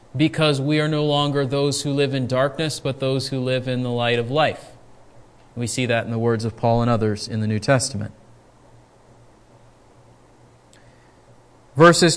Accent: American